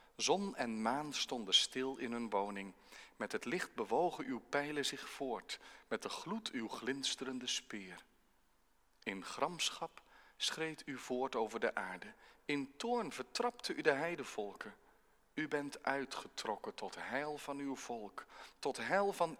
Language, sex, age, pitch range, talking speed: Dutch, male, 40-59, 120-190 Hz, 145 wpm